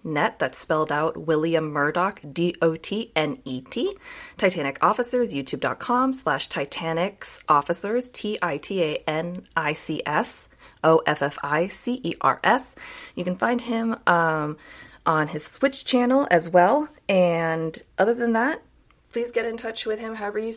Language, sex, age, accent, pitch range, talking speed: English, female, 20-39, American, 175-240 Hz, 165 wpm